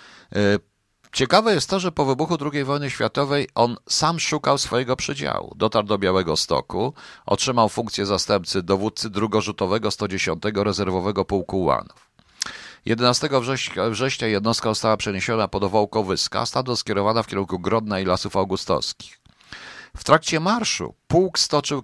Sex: male